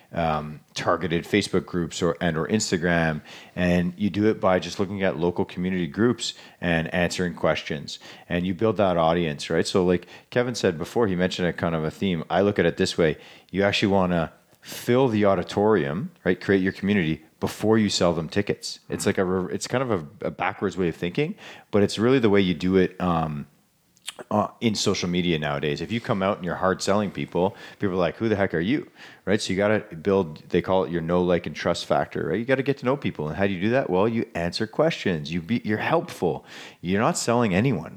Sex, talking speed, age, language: male, 230 wpm, 40-59, English